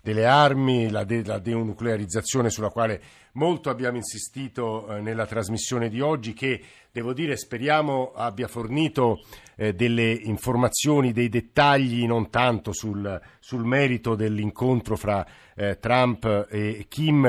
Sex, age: male, 50-69